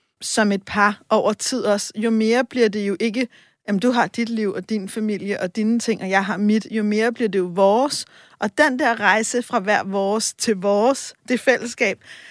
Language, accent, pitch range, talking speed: Danish, native, 225-295 Hz, 215 wpm